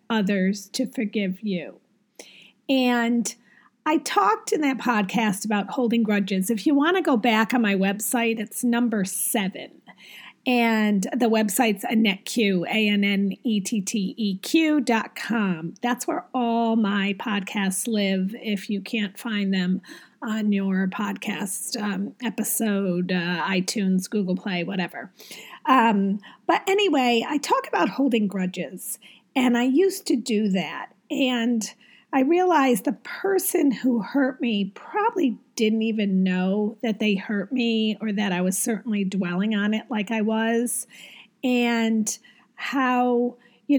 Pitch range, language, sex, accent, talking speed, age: 200-245 Hz, English, female, American, 140 wpm, 40-59